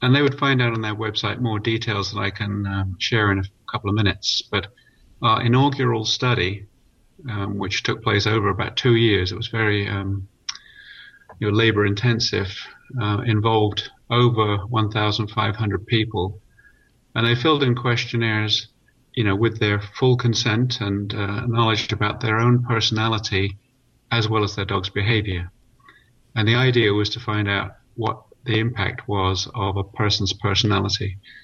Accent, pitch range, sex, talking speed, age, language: British, 100-115 Hz, male, 160 wpm, 40-59, English